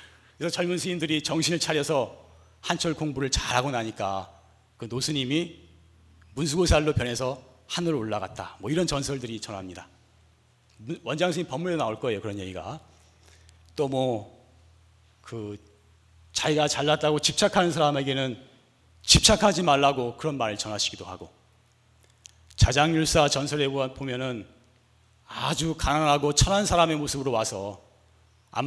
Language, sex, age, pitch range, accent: Korean, male, 40-59, 100-160 Hz, native